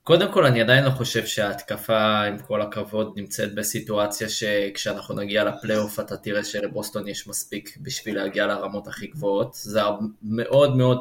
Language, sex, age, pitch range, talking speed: Hebrew, male, 20-39, 110-135 Hz, 155 wpm